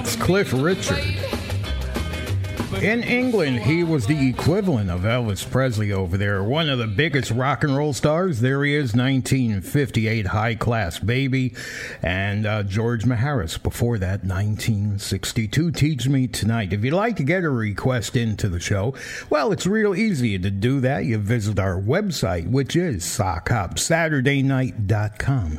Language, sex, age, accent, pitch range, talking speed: English, male, 60-79, American, 110-150 Hz, 150 wpm